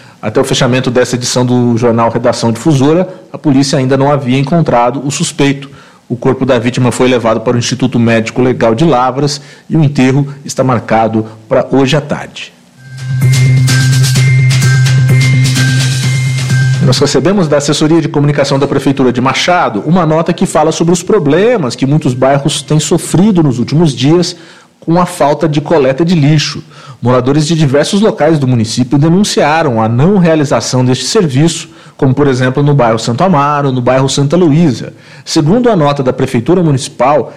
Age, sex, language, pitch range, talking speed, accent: 40-59, male, English, 130-165 Hz, 160 wpm, Brazilian